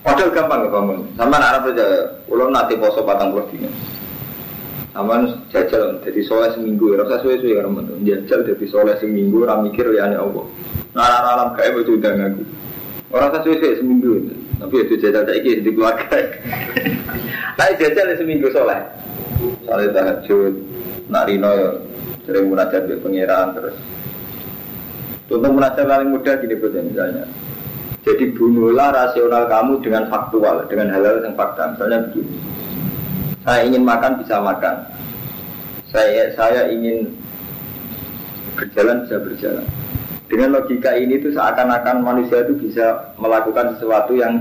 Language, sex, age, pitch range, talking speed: Indonesian, male, 20-39, 110-135 Hz, 120 wpm